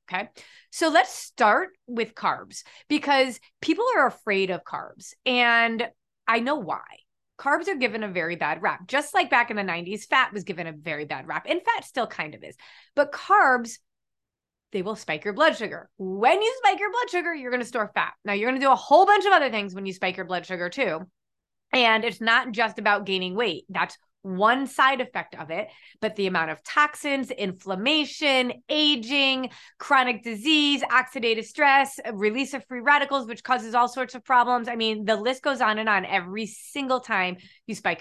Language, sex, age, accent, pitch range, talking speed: English, female, 30-49, American, 205-285 Hz, 200 wpm